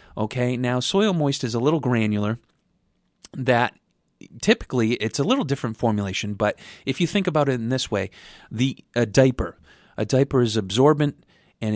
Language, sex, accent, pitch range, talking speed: English, male, American, 105-135 Hz, 160 wpm